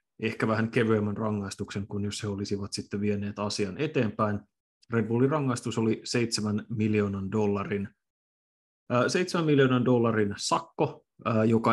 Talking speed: 120 wpm